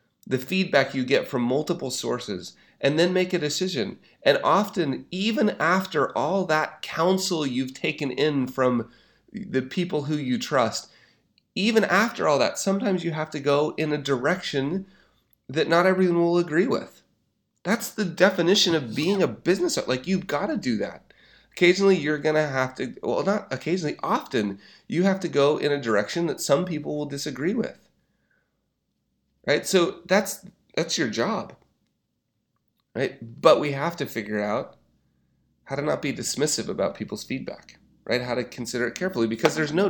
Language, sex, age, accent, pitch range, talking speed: English, male, 30-49, American, 125-180 Hz, 170 wpm